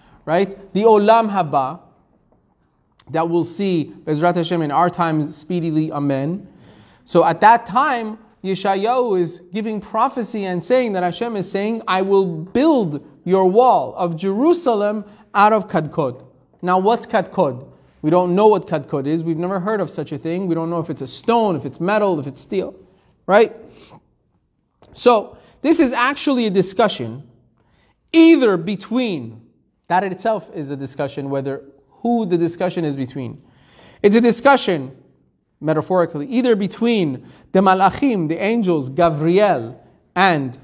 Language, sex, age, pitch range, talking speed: English, male, 30-49, 160-220 Hz, 145 wpm